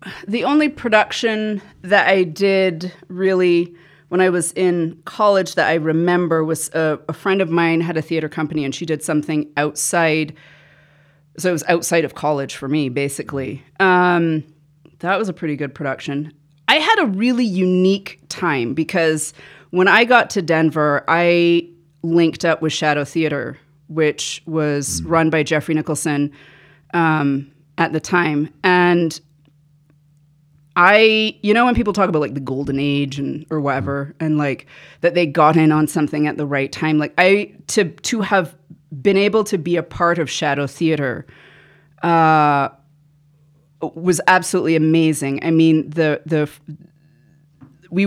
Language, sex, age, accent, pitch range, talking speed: English, female, 30-49, American, 150-180 Hz, 155 wpm